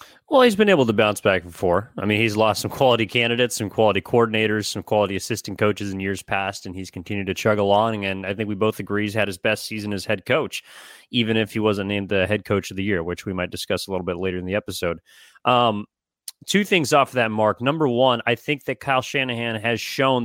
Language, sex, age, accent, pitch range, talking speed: English, male, 30-49, American, 105-125 Hz, 245 wpm